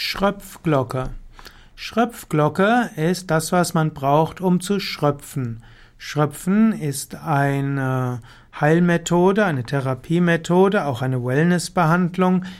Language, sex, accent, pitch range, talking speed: German, male, German, 140-185 Hz, 90 wpm